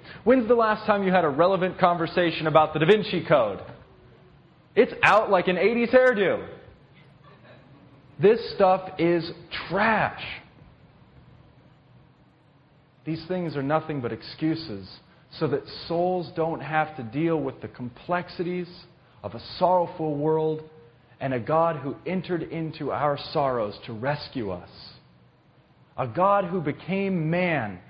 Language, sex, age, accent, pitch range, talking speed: English, male, 30-49, American, 120-175 Hz, 130 wpm